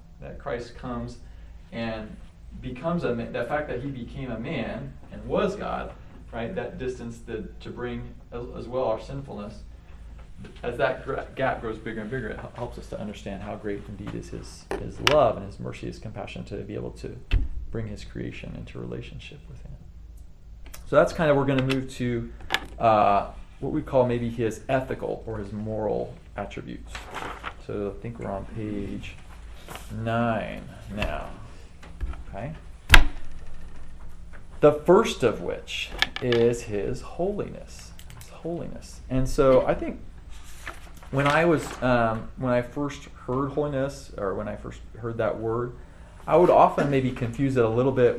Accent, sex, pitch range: American, male, 85-125 Hz